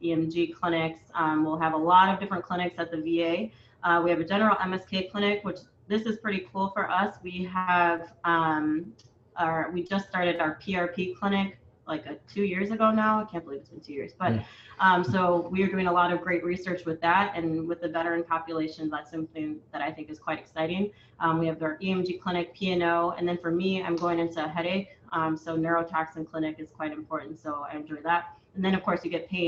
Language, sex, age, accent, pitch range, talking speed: English, female, 20-39, American, 155-175 Hz, 225 wpm